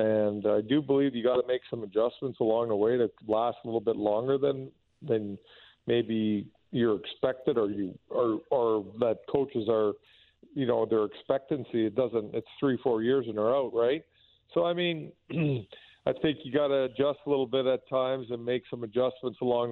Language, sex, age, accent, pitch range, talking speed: English, male, 50-69, American, 115-135 Hz, 190 wpm